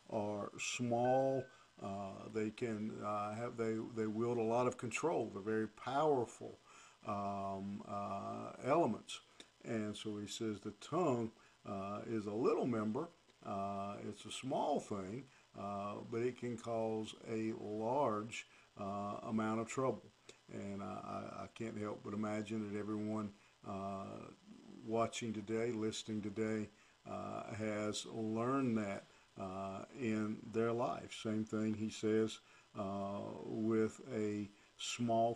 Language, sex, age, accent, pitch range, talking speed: English, male, 50-69, American, 105-115 Hz, 130 wpm